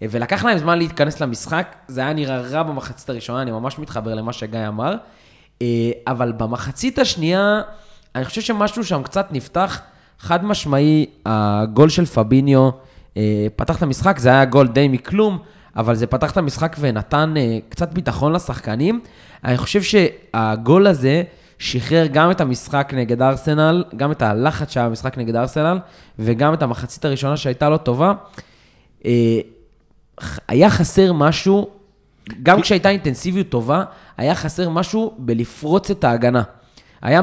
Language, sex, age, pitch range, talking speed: Hebrew, male, 20-39, 120-170 Hz, 135 wpm